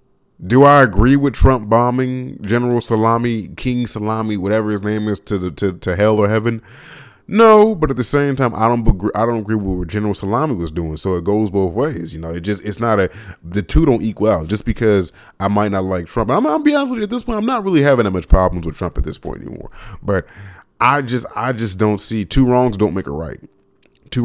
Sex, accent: male, American